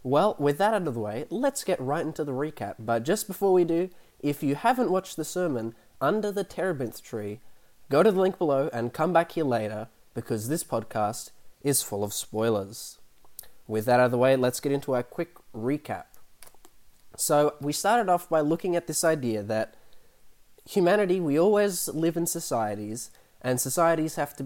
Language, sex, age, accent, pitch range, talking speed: English, male, 20-39, Australian, 115-155 Hz, 190 wpm